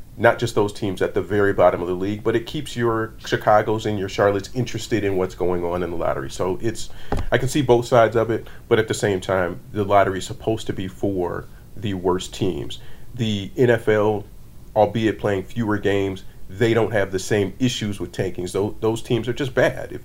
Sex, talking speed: male, 215 wpm